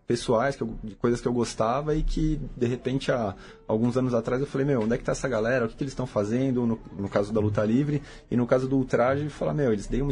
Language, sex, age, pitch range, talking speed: Portuguese, male, 20-39, 105-135 Hz, 280 wpm